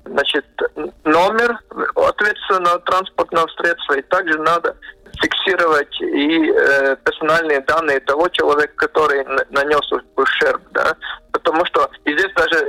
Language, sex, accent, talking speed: Russian, male, native, 105 wpm